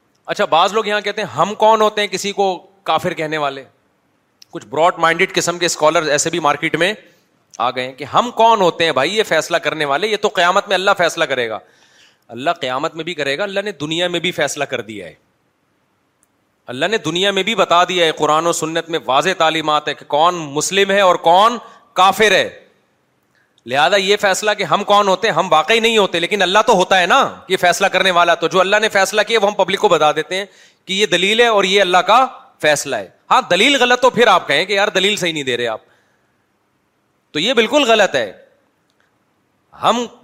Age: 30-49